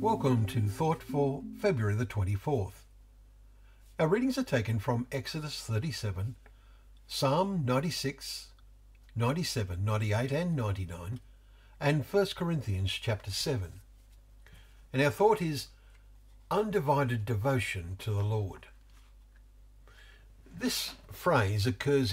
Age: 50-69